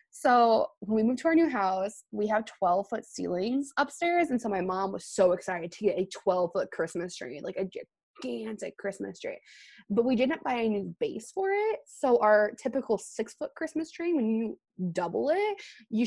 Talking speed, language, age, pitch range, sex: 200 wpm, English, 20-39, 190-250 Hz, female